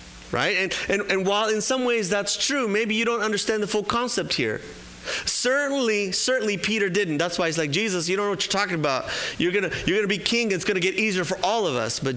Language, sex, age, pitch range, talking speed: English, male, 30-49, 150-215 Hz, 250 wpm